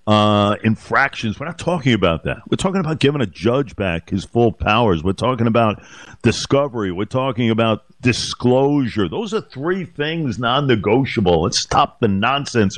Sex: male